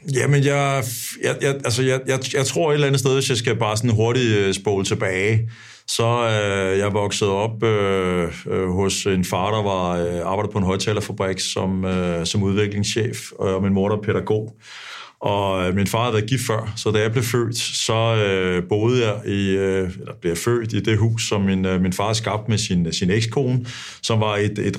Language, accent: Danish, native